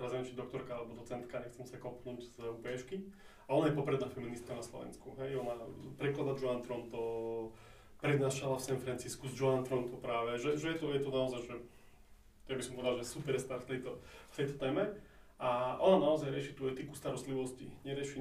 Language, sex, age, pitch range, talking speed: Slovak, male, 20-39, 120-135 Hz, 180 wpm